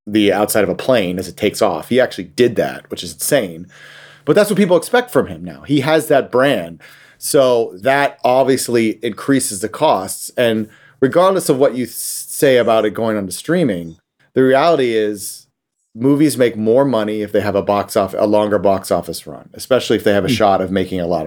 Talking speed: 210 wpm